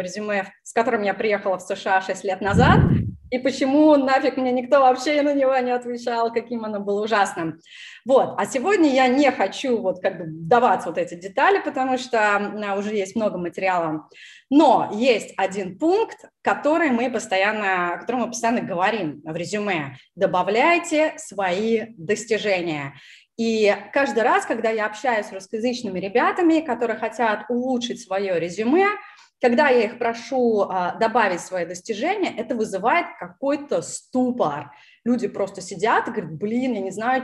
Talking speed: 155 wpm